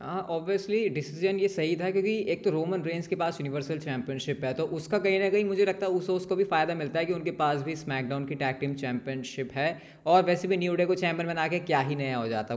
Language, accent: Hindi, native